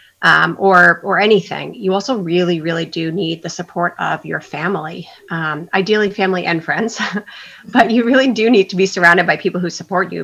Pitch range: 170-200 Hz